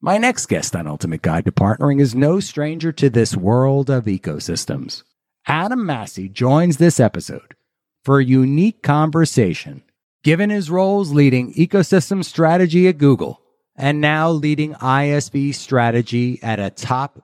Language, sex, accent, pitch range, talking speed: English, male, American, 105-165 Hz, 145 wpm